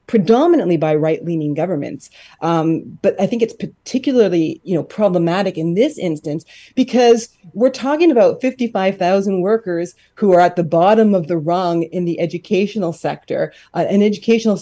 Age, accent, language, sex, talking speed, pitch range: 30-49, American, English, female, 150 wpm, 165-215 Hz